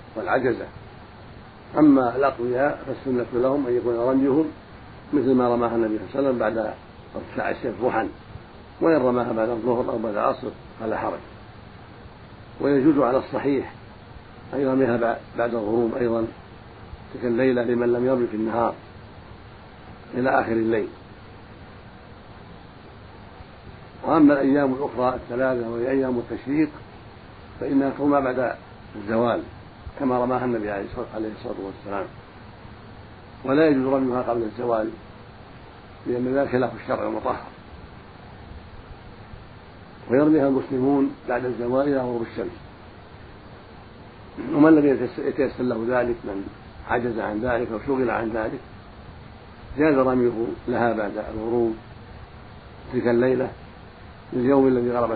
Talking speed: 115 wpm